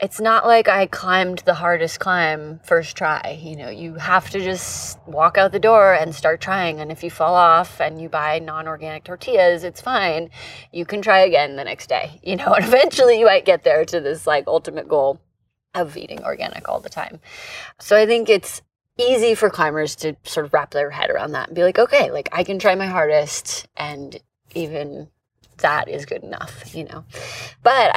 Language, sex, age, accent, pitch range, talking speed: English, female, 20-39, American, 155-195 Hz, 205 wpm